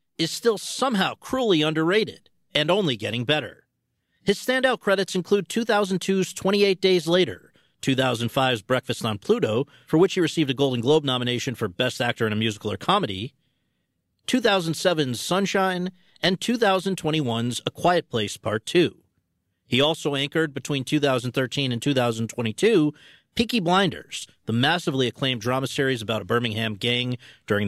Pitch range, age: 120-180 Hz, 40-59